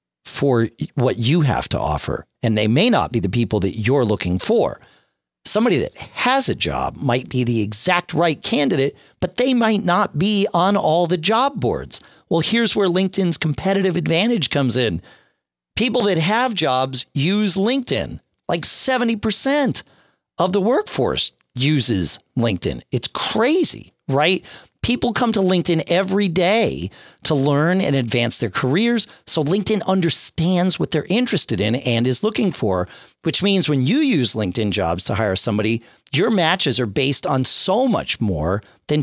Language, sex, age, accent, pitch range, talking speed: English, male, 40-59, American, 125-190 Hz, 160 wpm